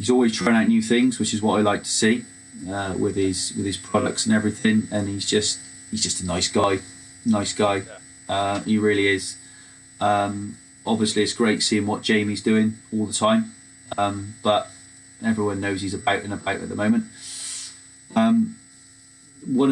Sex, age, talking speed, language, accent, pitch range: male, 20-39, 180 wpm, English, British, 95-115 Hz